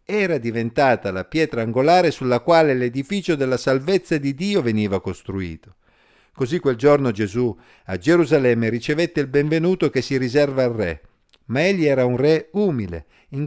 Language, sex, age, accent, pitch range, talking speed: Italian, male, 50-69, native, 105-145 Hz, 155 wpm